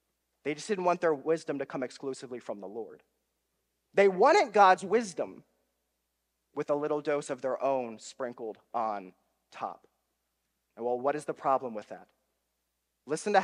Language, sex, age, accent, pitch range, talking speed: English, male, 30-49, American, 120-165 Hz, 160 wpm